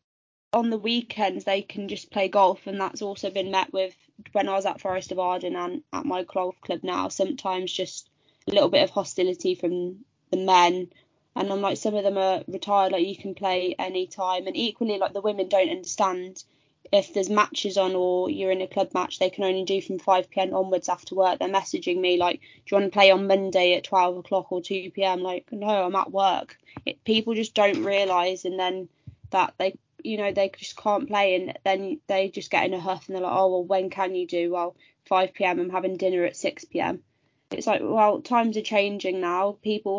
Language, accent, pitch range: English, British, 180-205 Hz